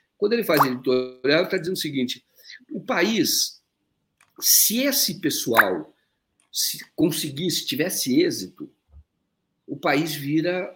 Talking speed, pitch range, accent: 115 wpm, 140-205 Hz, Brazilian